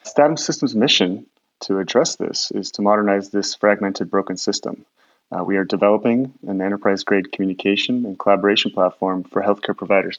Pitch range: 100-110 Hz